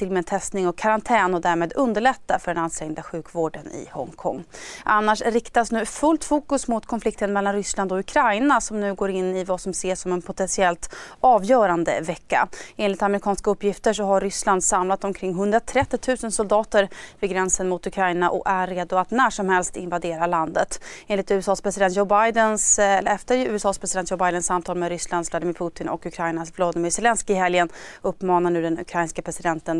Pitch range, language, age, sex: 180-220 Hz, Swedish, 30-49, female